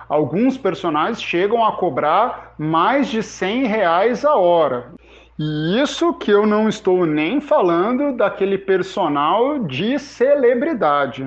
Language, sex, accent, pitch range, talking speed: Portuguese, male, Brazilian, 165-230 Hz, 115 wpm